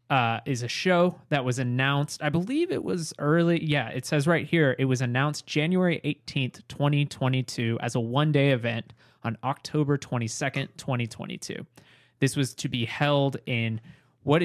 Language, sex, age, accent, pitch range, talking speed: English, male, 20-39, American, 120-145 Hz, 160 wpm